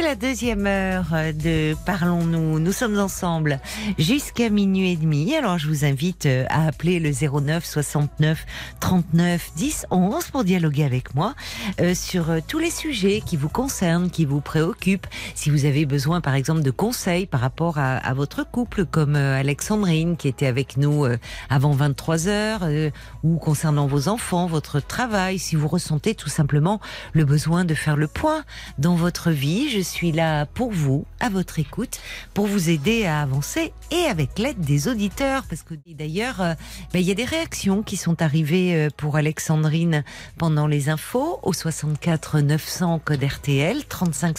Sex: female